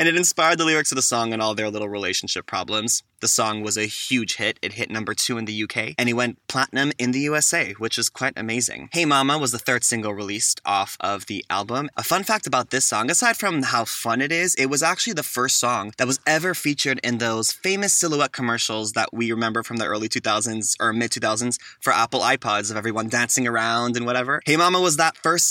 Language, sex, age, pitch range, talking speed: English, male, 20-39, 115-140 Hz, 235 wpm